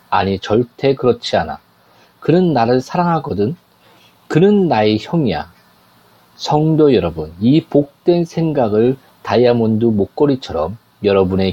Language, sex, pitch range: Korean, male, 105-155 Hz